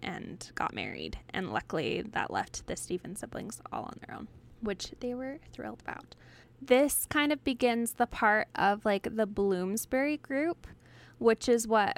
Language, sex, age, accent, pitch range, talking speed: English, female, 10-29, American, 195-245 Hz, 165 wpm